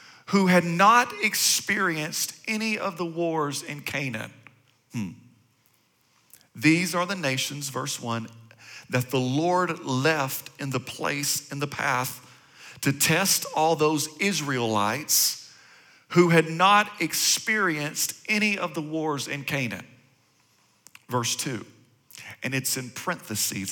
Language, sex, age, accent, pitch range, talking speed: English, male, 40-59, American, 125-170 Hz, 120 wpm